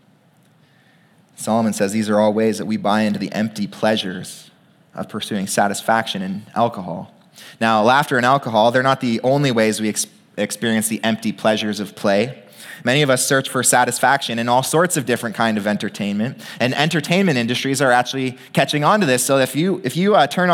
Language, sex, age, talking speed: English, male, 20-39, 190 wpm